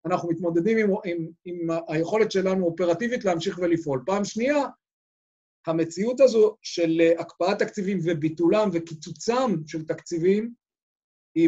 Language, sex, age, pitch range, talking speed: Hebrew, male, 50-69, 165-195 Hz, 115 wpm